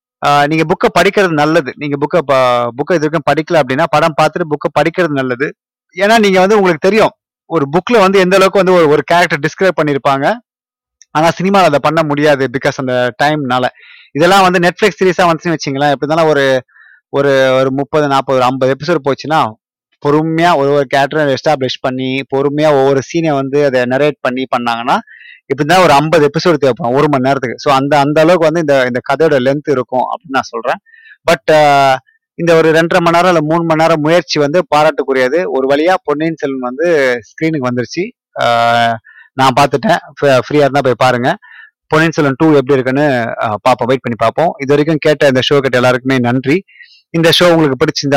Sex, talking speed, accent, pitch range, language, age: male, 170 wpm, native, 135-165 Hz, Tamil, 30-49